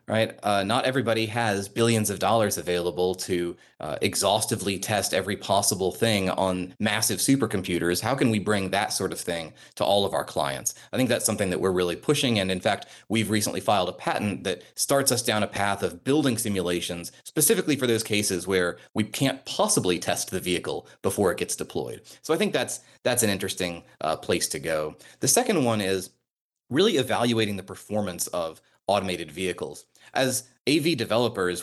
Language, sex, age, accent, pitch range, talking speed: English, male, 30-49, American, 95-120 Hz, 185 wpm